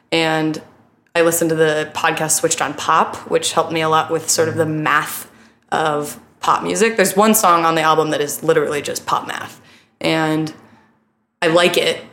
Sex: female